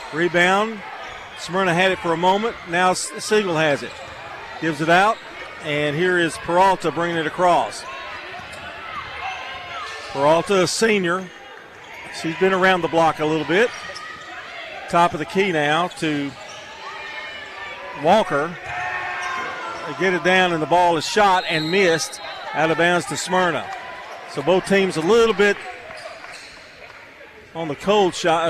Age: 40-59